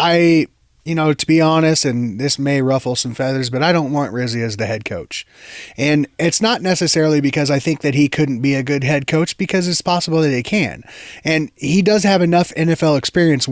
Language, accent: English, American